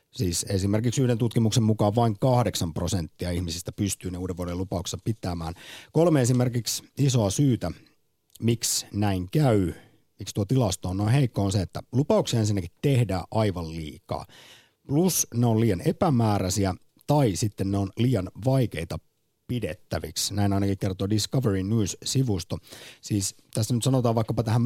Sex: male